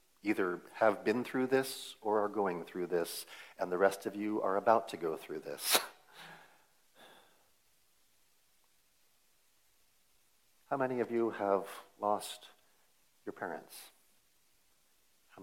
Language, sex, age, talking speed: English, male, 50-69, 115 wpm